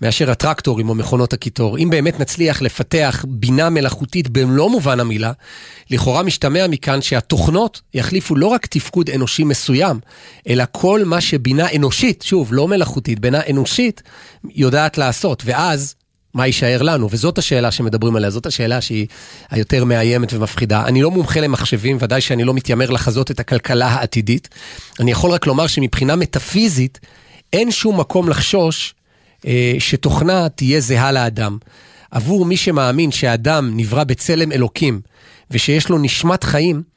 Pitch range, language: 120-160 Hz, Hebrew